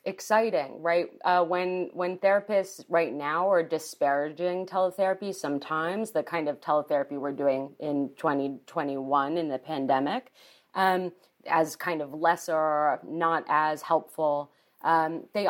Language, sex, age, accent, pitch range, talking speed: English, female, 30-49, American, 160-205 Hz, 130 wpm